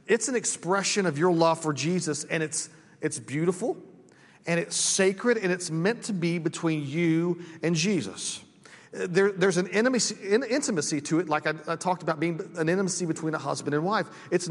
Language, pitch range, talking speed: English, 160-200 Hz, 190 wpm